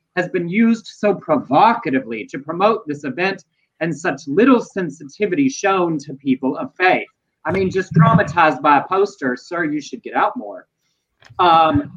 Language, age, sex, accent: English, 30-49, male, American